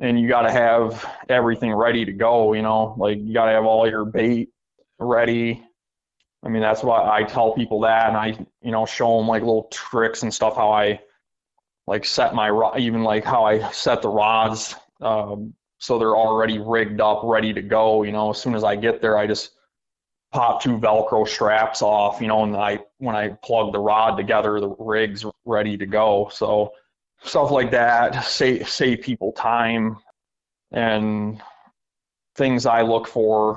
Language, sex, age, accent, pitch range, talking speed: English, male, 20-39, American, 105-115 Hz, 185 wpm